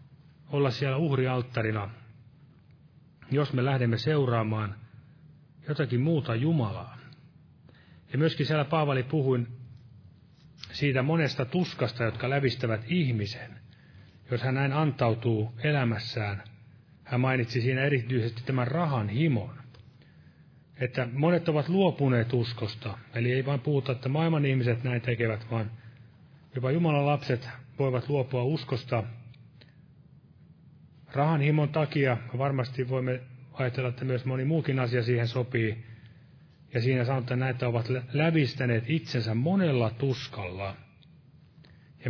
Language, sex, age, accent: Finnish, male, 30-49, native